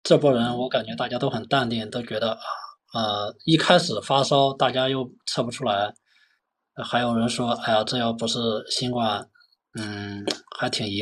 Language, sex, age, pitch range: Chinese, male, 20-39, 125-170 Hz